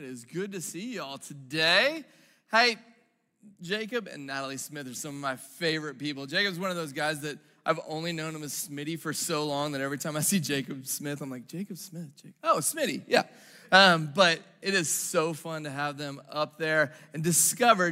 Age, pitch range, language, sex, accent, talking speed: 20-39, 150-195 Hz, English, male, American, 205 wpm